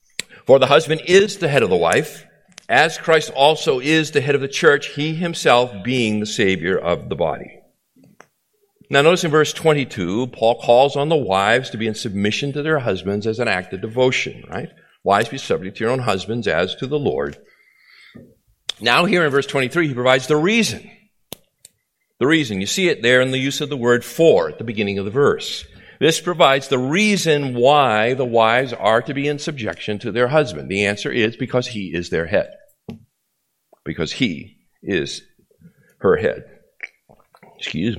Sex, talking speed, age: male, 185 wpm, 50-69